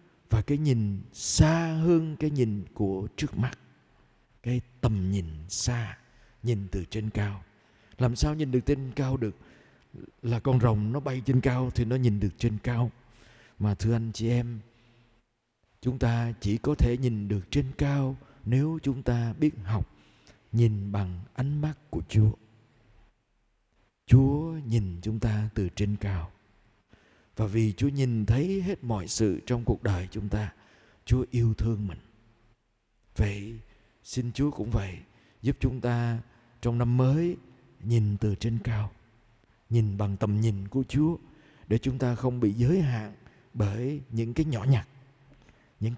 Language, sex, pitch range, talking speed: Vietnamese, male, 105-130 Hz, 160 wpm